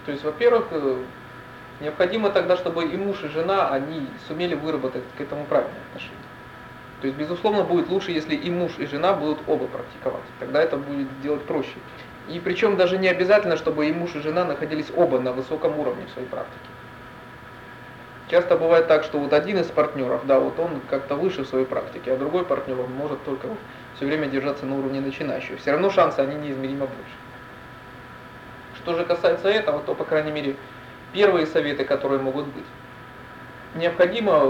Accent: native